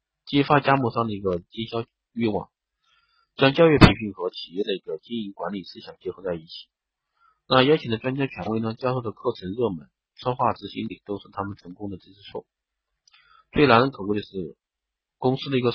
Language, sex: Chinese, male